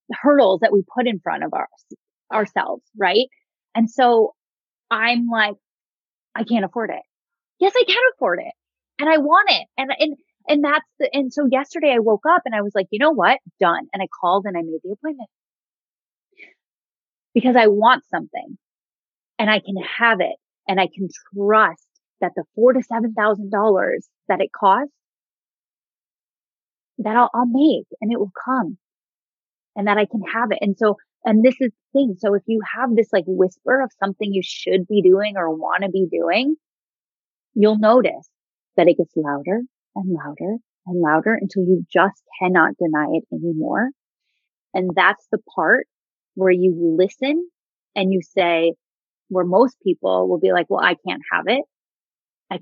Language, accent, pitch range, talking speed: English, American, 190-255 Hz, 175 wpm